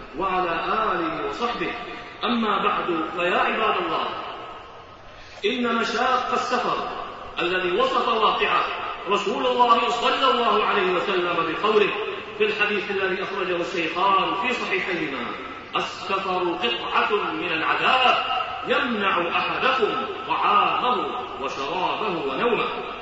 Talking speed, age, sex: 95 wpm, 40-59, male